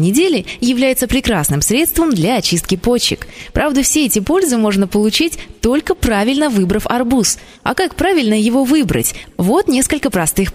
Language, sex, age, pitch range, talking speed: Russian, female, 20-39, 185-265 Hz, 140 wpm